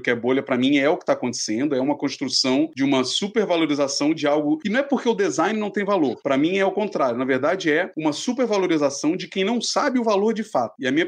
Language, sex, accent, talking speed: Portuguese, male, Brazilian, 260 wpm